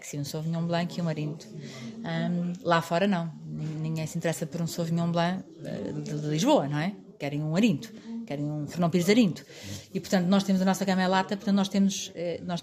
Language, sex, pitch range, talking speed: Portuguese, female, 170-205 Hz, 215 wpm